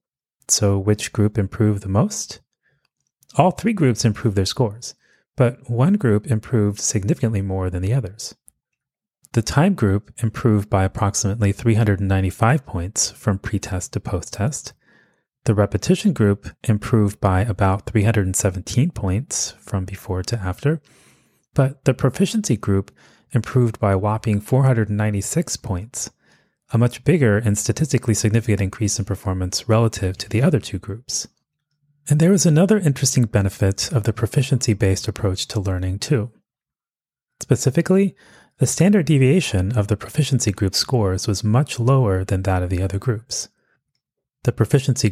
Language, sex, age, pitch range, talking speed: English, male, 30-49, 100-130 Hz, 140 wpm